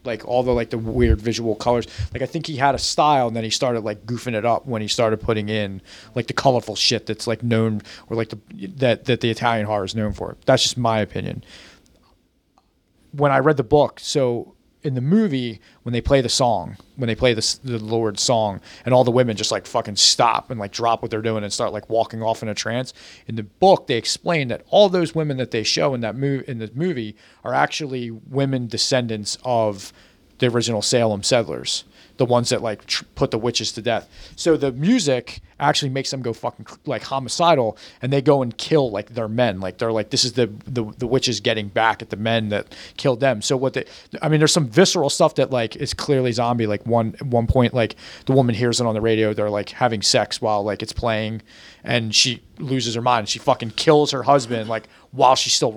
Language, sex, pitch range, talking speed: English, male, 110-130 Hz, 230 wpm